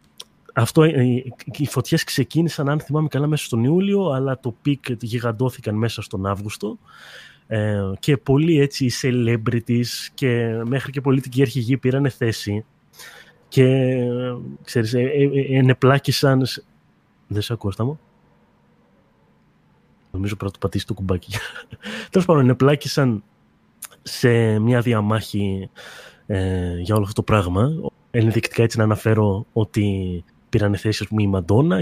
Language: Greek